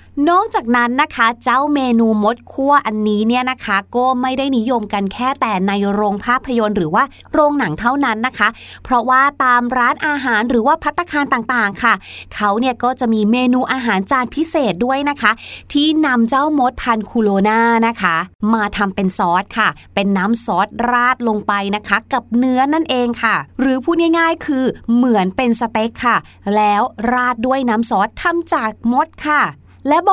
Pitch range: 215-270 Hz